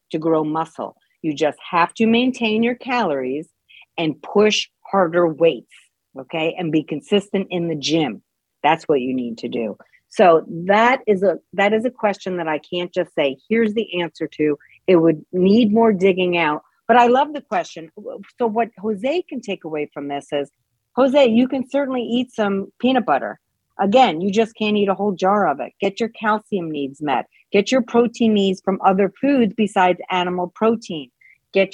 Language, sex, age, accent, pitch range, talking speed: English, female, 50-69, American, 160-215 Hz, 185 wpm